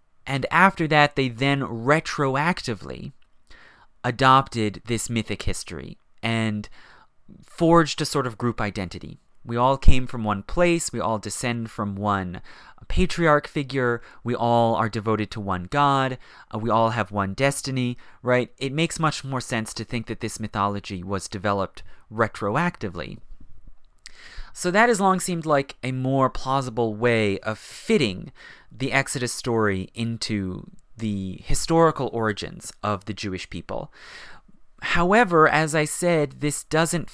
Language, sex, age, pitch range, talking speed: English, male, 30-49, 105-145 Hz, 140 wpm